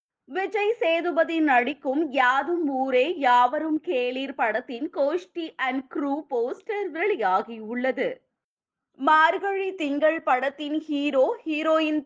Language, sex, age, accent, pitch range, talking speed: Tamil, female, 20-39, native, 260-340 Hz, 85 wpm